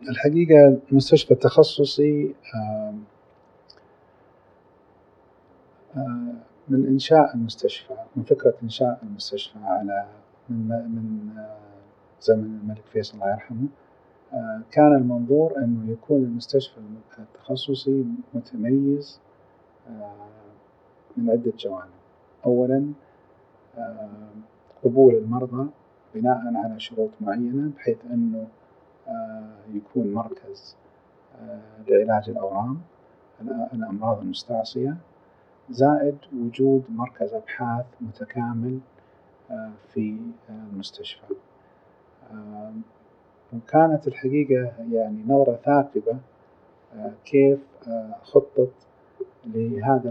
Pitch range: 110-140 Hz